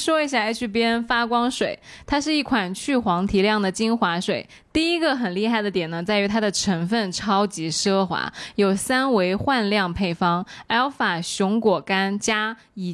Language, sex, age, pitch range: Chinese, female, 20-39, 185-240 Hz